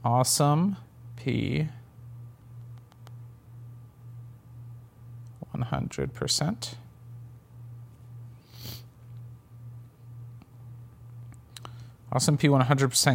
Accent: American